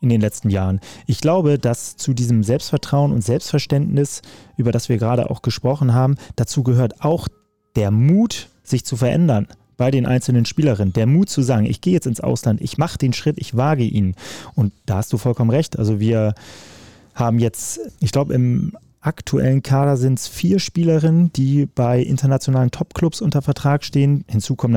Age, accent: 30-49, German